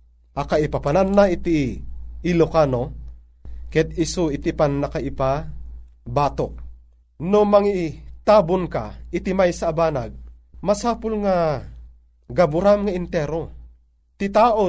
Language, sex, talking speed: Filipino, male, 95 wpm